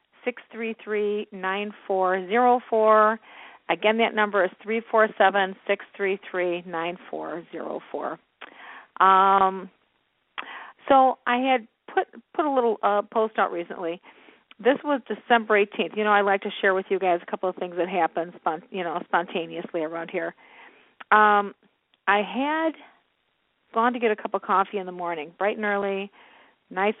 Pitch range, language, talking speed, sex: 190-230 Hz, English, 165 wpm, female